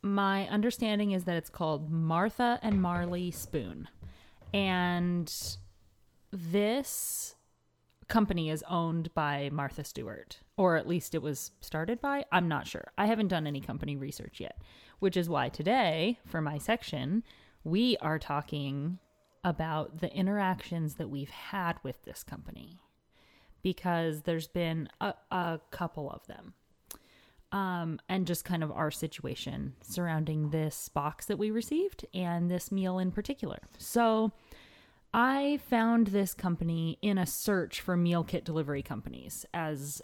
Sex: female